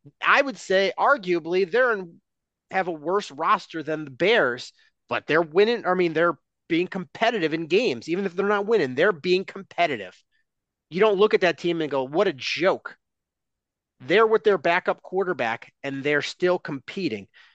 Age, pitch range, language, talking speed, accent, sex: 30-49, 135-195 Hz, English, 175 wpm, American, male